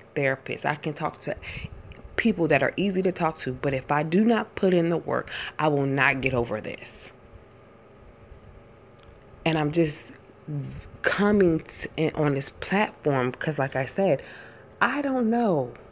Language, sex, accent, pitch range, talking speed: English, female, American, 135-180 Hz, 155 wpm